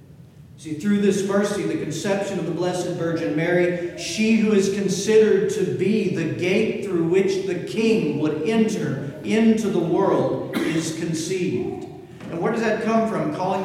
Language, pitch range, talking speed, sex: English, 155-205 Hz, 165 wpm, male